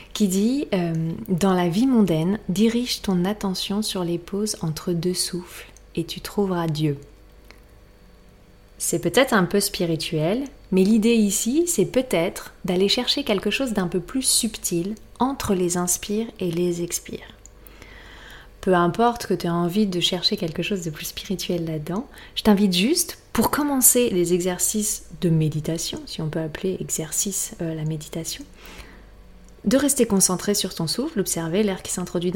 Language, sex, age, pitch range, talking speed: French, female, 30-49, 165-210 Hz, 155 wpm